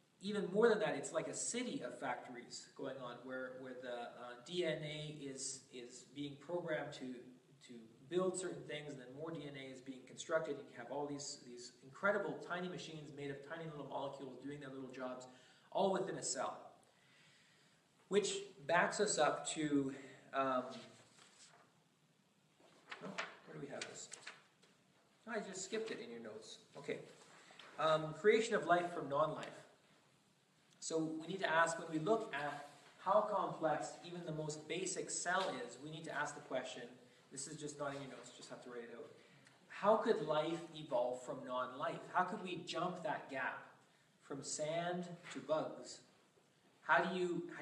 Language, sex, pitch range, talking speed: English, male, 135-175 Hz, 170 wpm